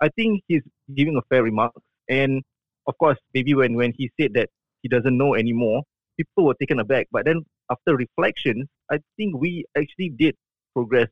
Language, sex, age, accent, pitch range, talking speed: English, male, 20-39, Malaysian, 125-145 Hz, 185 wpm